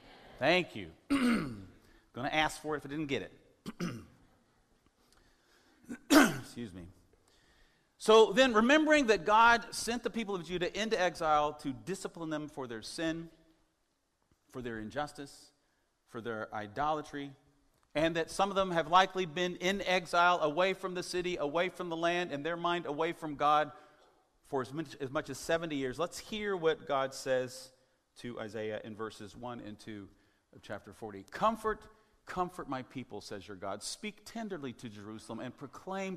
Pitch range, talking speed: 130-185 Hz, 160 wpm